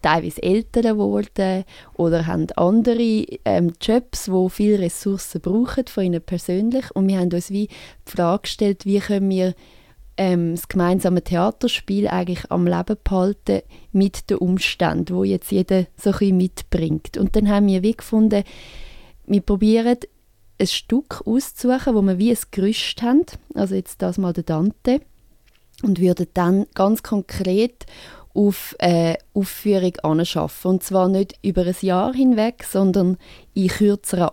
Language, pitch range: German, 175-205 Hz